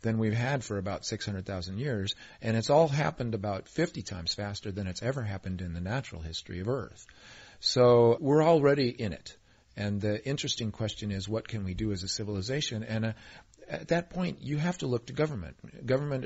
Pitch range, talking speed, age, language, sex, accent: 100-125 Hz, 200 wpm, 40-59, English, male, American